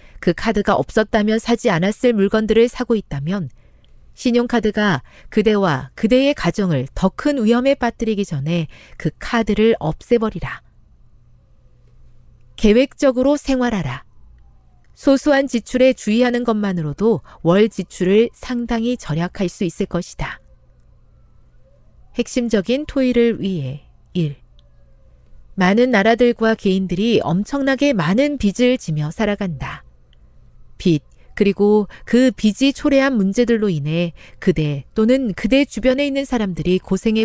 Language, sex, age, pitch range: Korean, female, 40-59, 160-235 Hz